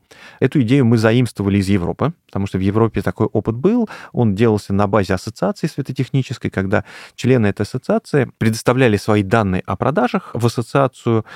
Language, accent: Russian, native